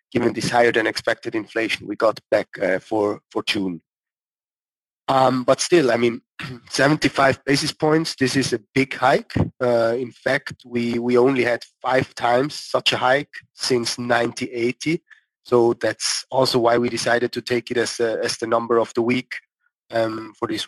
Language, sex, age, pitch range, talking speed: English, male, 30-49, 120-145 Hz, 170 wpm